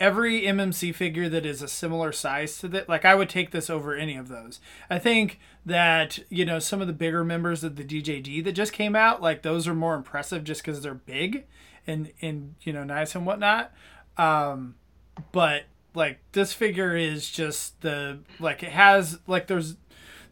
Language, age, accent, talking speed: English, 20-39, American, 190 wpm